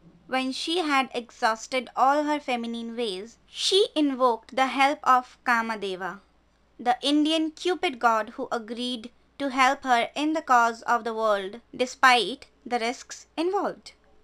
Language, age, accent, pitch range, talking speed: Hindi, 20-39, native, 235-280 Hz, 145 wpm